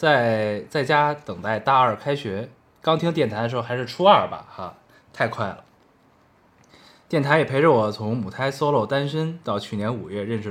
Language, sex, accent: Chinese, male, native